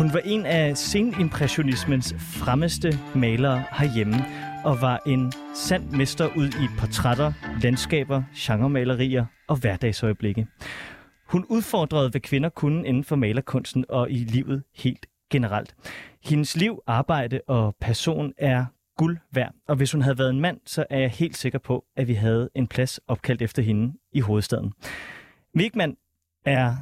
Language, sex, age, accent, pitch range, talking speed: Danish, male, 30-49, native, 125-155 Hz, 150 wpm